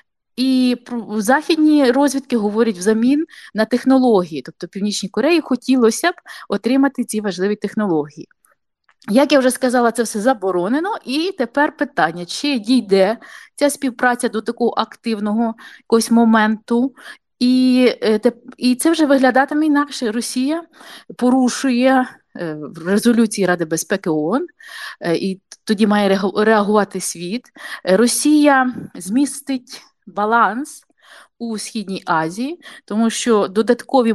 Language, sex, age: Ukrainian, female, 30-49